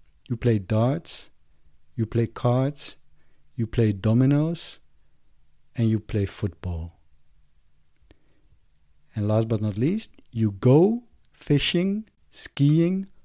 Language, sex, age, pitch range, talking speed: English, male, 50-69, 100-160 Hz, 100 wpm